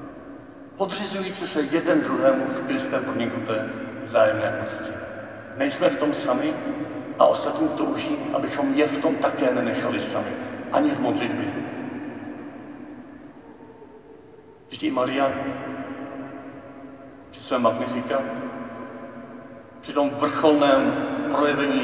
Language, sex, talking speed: Czech, male, 100 wpm